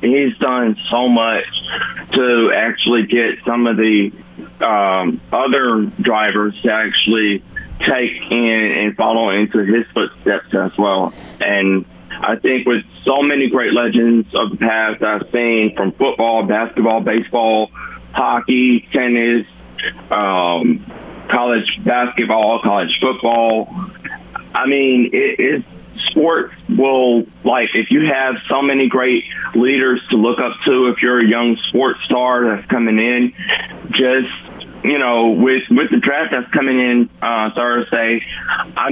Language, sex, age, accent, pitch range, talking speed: English, male, 30-49, American, 110-125 Hz, 135 wpm